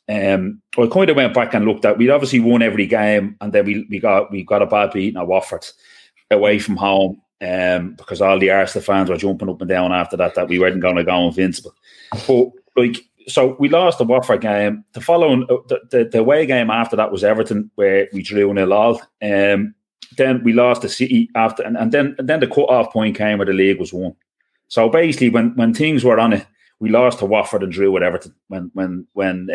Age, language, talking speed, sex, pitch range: 30-49, English, 230 wpm, male, 95-120 Hz